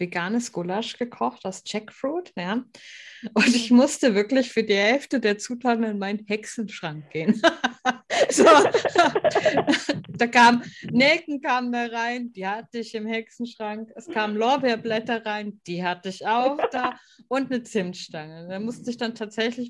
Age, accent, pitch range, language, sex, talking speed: 30-49, German, 200-255 Hz, German, female, 135 wpm